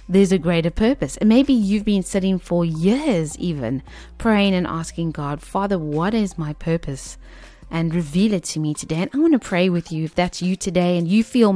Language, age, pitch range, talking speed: English, 30-49, 155-190 Hz, 215 wpm